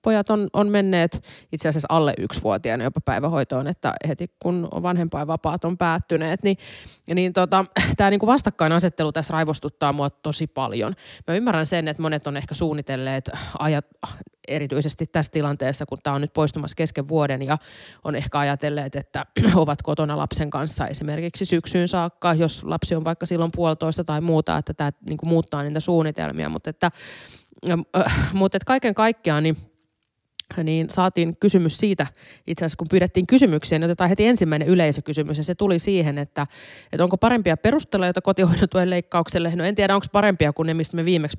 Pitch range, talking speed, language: 150-180 Hz, 170 wpm, Finnish